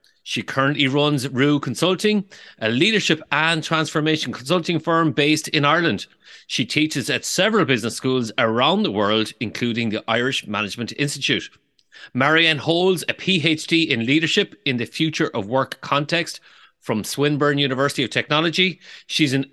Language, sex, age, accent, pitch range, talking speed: English, male, 30-49, Irish, 135-165 Hz, 145 wpm